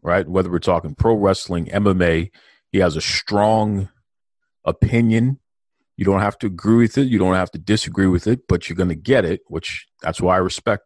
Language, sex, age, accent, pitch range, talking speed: English, male, 40-59, American, 85-110 Hz, 205 wpm